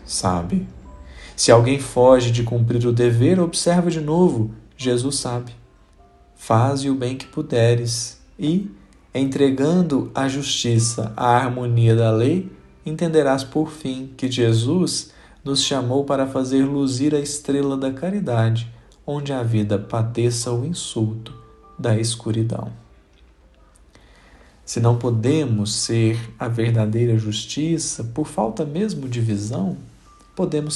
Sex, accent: male, Brazilian